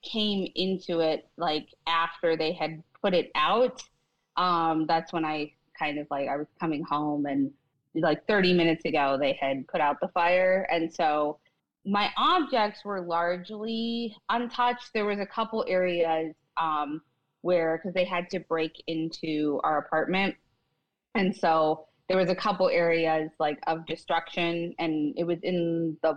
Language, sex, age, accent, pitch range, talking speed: English, female, 20-39, American, 160-195 Hz, 160 wpm